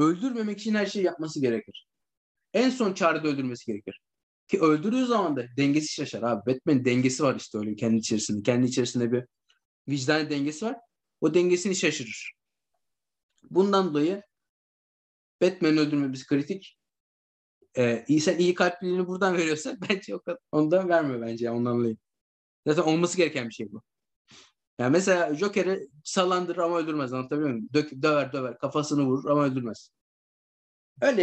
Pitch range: 130-195 Hz